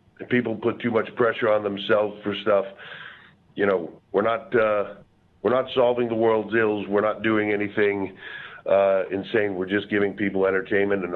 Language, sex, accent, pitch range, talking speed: English, male, American, 100-110 Hz, 170 wpm